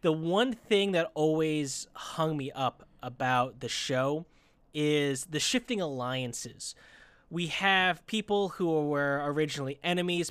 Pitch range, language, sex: 140-175 Hz, English, male